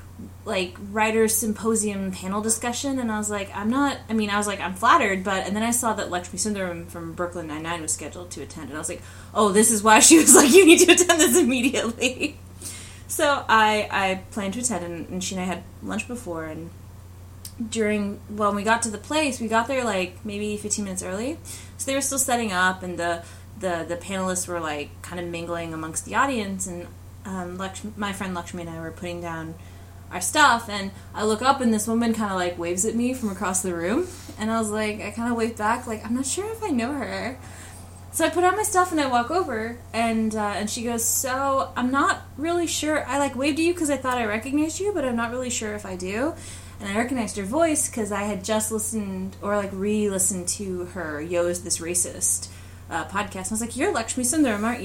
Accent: American